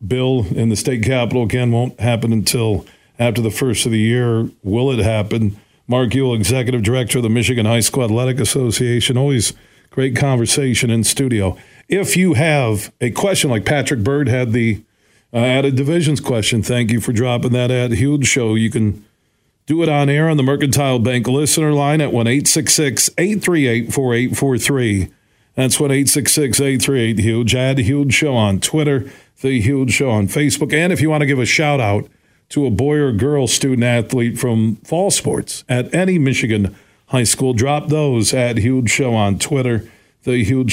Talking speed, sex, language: 165 wpm, male, English